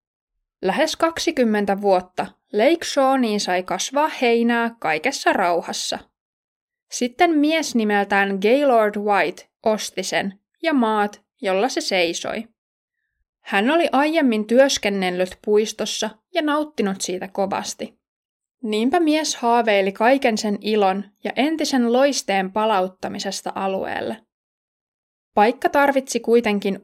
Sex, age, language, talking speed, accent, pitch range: female, 20-39, Finnish, 100 wpm, native, 200-280 Hz